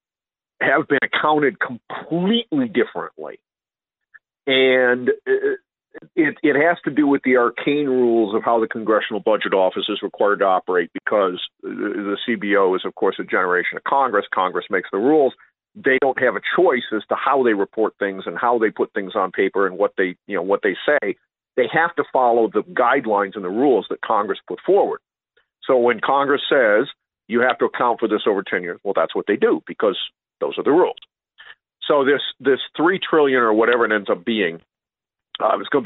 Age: 50-69